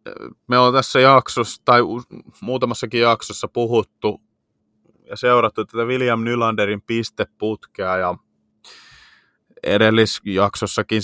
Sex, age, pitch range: male, 20-39, 110-130 Hz